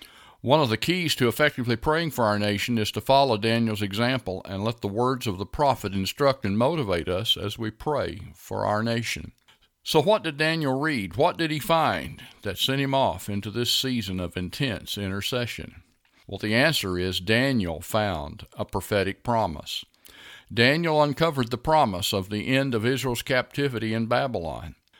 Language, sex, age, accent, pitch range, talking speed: English, male, 50-69, American, 100-135 Hz, 175 wpm